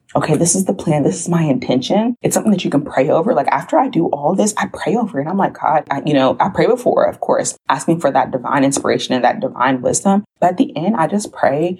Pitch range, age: 140-180 Hz, 20-39